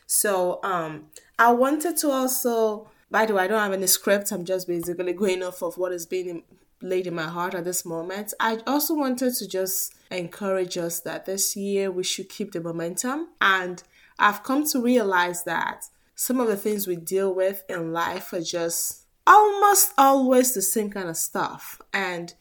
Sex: female